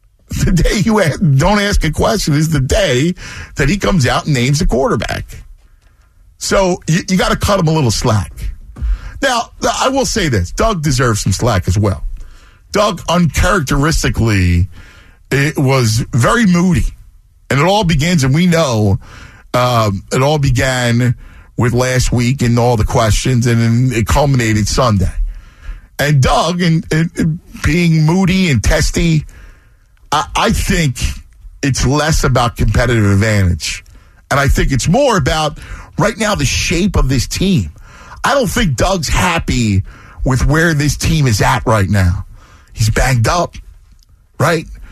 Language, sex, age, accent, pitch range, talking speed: English, male, 50-69, American, 100-160 Hz, 145 wpm